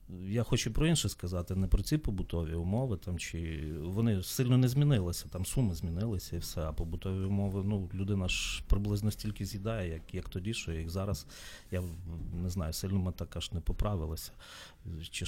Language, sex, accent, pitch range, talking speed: Ukrainian, male, native, 85-110 Hz, 175 wpm